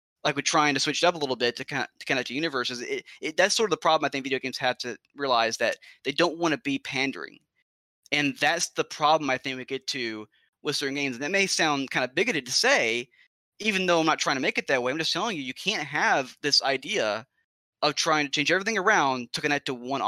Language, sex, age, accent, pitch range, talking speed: English, male, 20-39, American, 130-165 Hz, 250 wpm